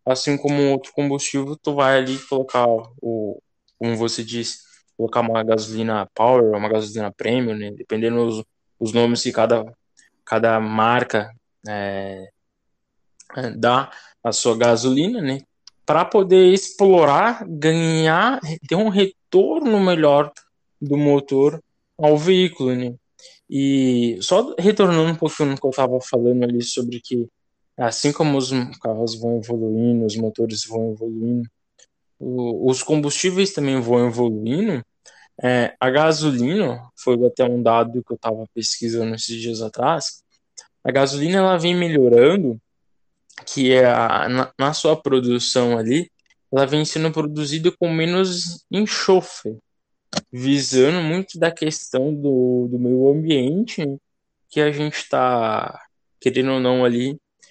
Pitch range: 115-150 Hz